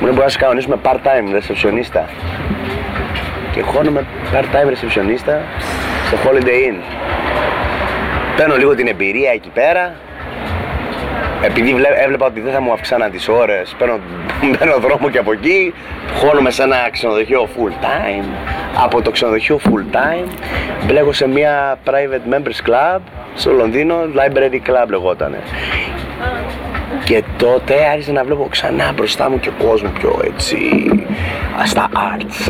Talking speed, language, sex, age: 125 wpm, Greek, male, 30-49